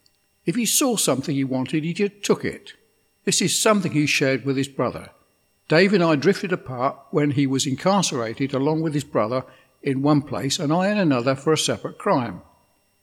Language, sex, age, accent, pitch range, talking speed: English, male, 60-79, British, 135-180 Hz, 190 wpm